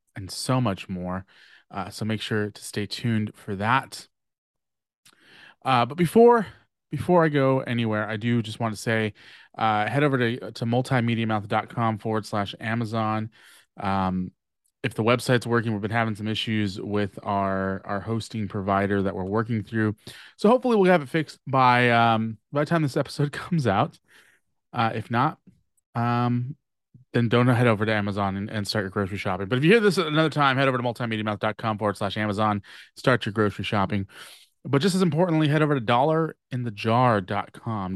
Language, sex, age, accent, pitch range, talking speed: English, male, 30-49, American, 105-130 Hz, 175 wpm